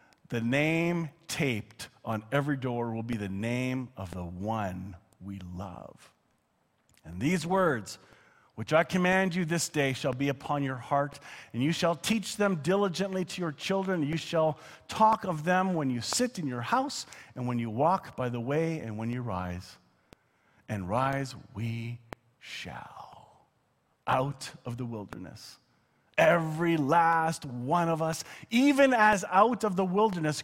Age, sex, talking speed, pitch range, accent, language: 40-59, male, 155 wpm, 115-170 Hz, American, English